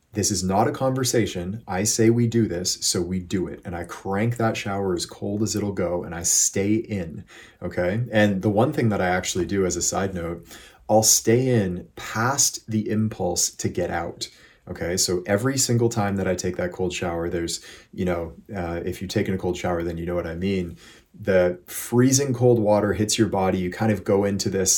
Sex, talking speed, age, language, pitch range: male, 220 wpm, 30-49, English, 90-110 Hz